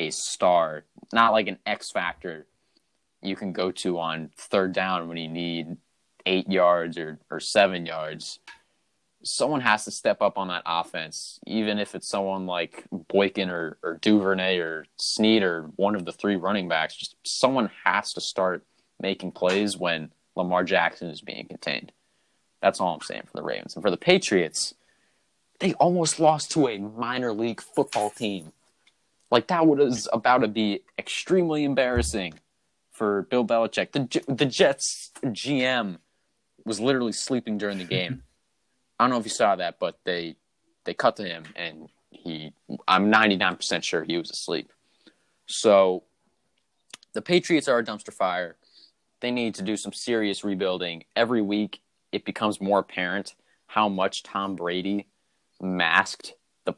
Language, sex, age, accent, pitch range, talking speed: English, male, 20-39, American, 90-115 Hz, 160 wpm